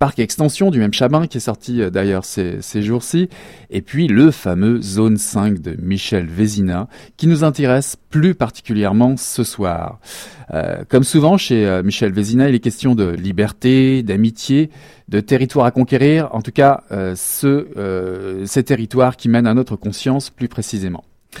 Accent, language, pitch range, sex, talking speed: French, French, 105-135 Hz, male, 165 wpm